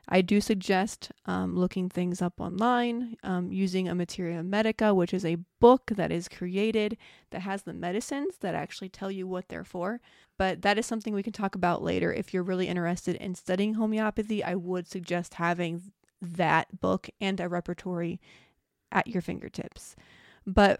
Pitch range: 180-205 Hz